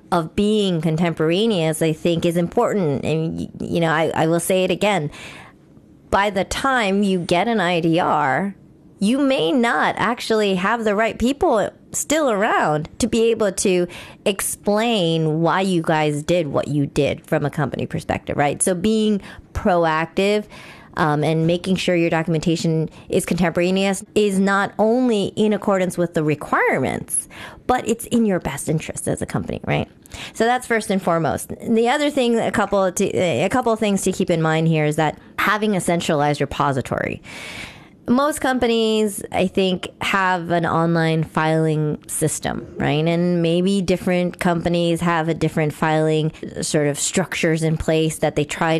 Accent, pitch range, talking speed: American, 160-205 Hz, 160 wpm